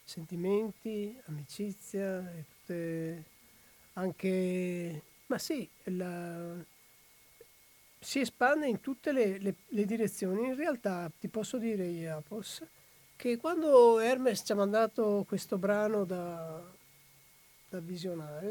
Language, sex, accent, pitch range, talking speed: Italian, male, native, 180-220 Hz, 105 wpm